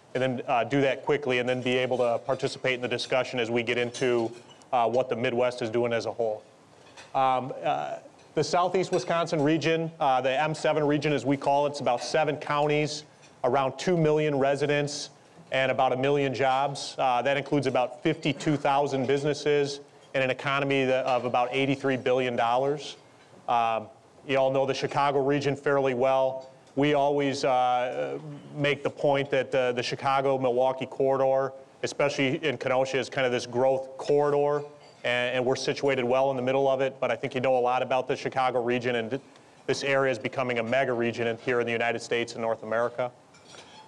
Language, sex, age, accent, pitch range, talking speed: English, male, 30-49, American, 125-145 Hz, 185 wpm